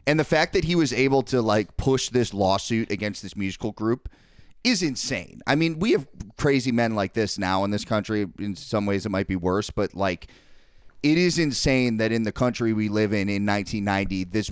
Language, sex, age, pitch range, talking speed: English, male, 30-49, 95-125 Hz, 215 wpm